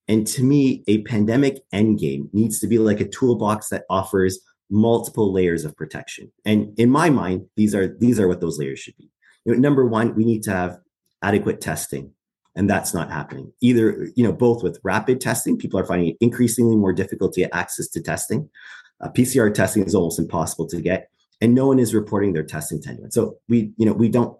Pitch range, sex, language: 90-120 Hz, male, English